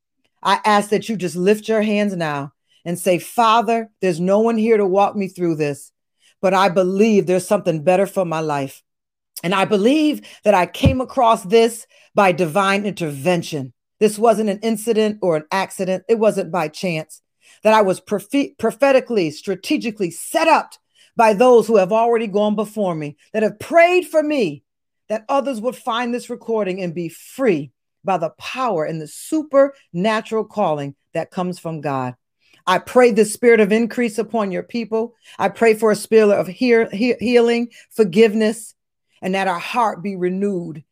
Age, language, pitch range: 40-59, English, 165-225 Hz